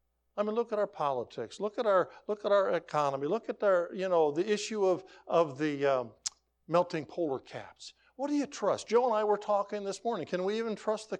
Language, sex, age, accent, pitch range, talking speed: English, male, 60-79, American, 120-200 Hz, 230 wpm